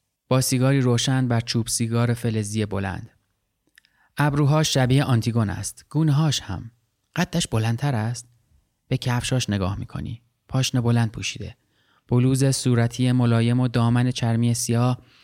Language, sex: Persian, male